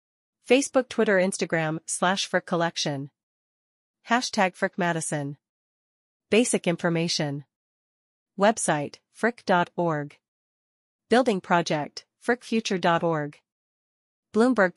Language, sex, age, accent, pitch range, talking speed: English, female, 40-59, American, 155-210 Hz, 70 wpm